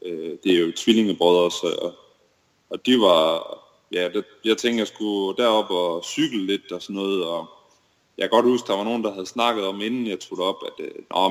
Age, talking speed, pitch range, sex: 20-39, 230 wpm, 90-110 Hz, male